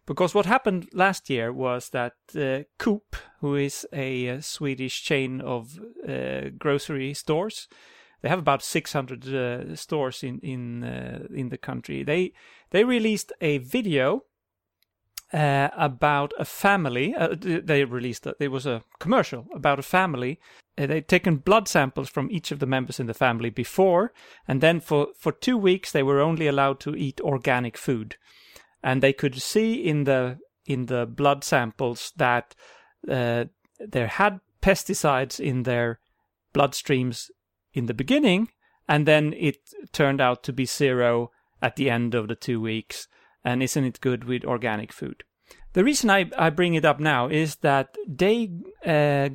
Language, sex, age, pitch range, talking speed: English, male, 30-49, 125-170 Hz, 165 wpm